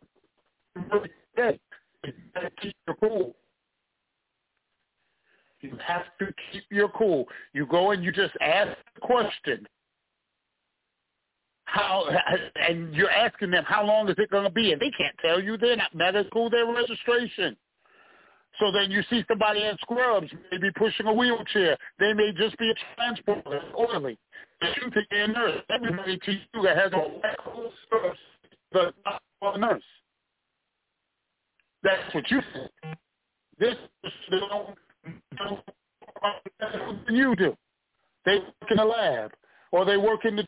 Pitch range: 190-220 Hz